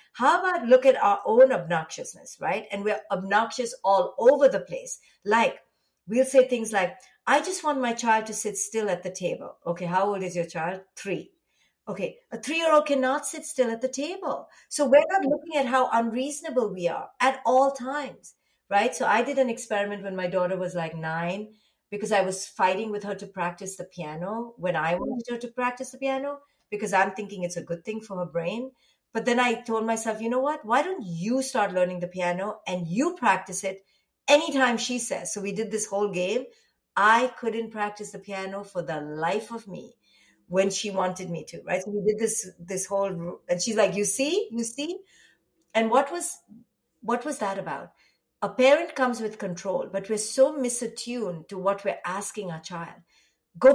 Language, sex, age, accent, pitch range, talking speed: English, female, 50-69, Indian, 190-265 Hz, 200 wpm